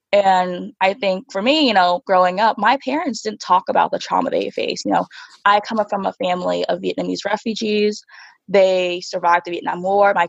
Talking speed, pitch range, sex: 205 wpm, 185-235 Hz, female